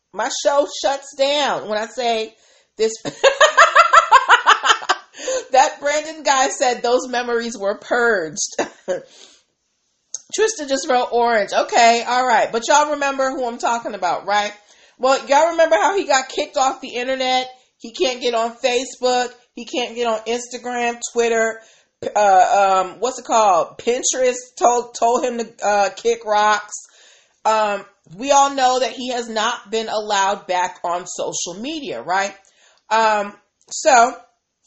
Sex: female